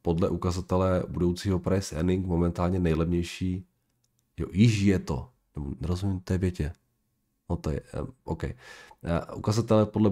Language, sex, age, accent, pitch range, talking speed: Czech, male, 40-59, native, 80-100 Hz, 125 wpm